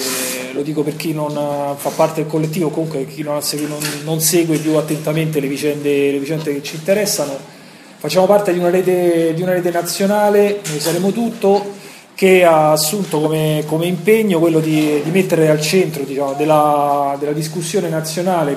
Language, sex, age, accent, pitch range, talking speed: Italian, male, 30-49, native, 150-185 Hz, 165 wpm